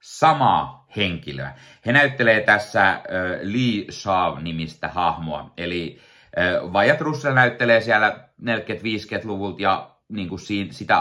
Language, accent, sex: Finnish, native, male